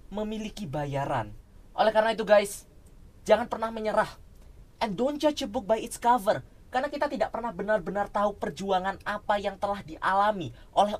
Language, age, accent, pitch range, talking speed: Indonesian, 20-39, native, 170-235 Hz, 160 wpm